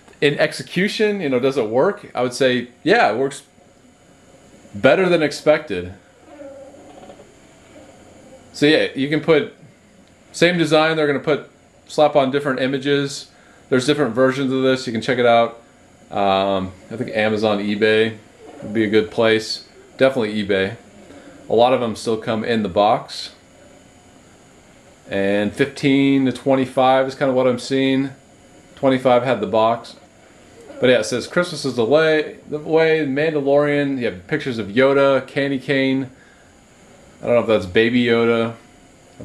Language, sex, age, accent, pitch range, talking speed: English, male, 30-49, American, 115-150 Hz, 150 wpm